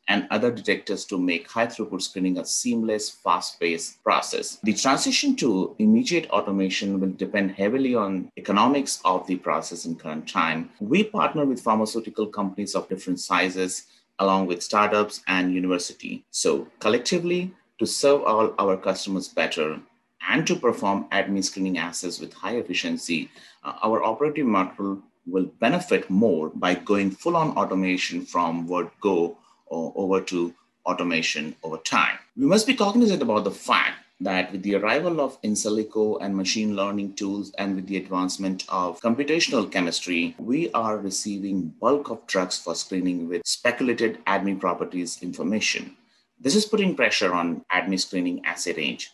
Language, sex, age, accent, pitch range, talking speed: English, male, 30-49, Indian, 95-115 Hz, 150 wpm